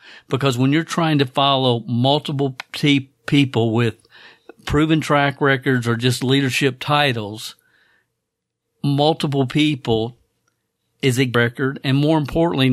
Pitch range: 120-140 Hz